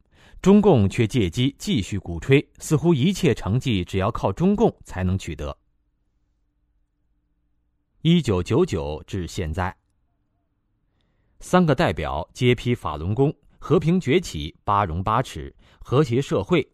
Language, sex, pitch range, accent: Chinese, male, 90-140 Hz, native